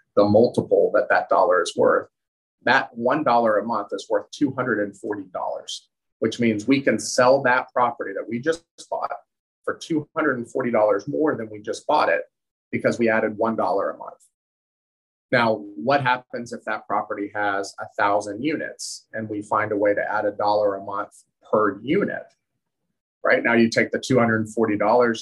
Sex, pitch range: male, 105-165 Hz